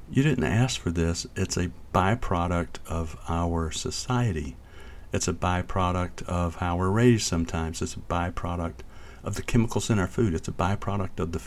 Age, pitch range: 50-69, 85-110 Hz